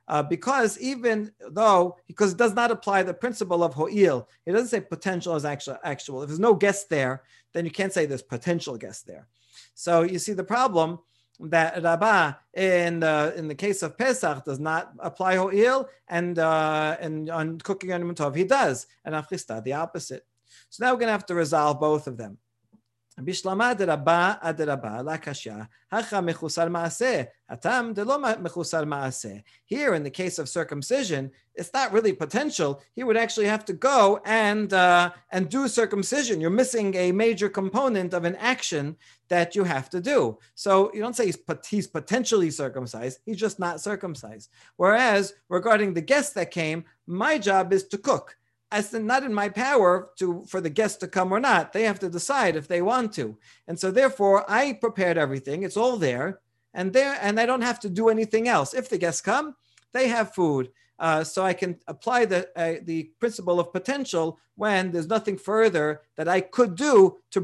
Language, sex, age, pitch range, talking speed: English, male, 40-59, 155-215 Hz, 175 wpm